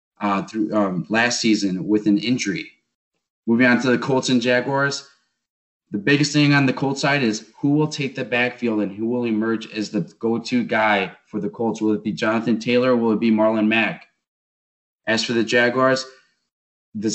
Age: 20-39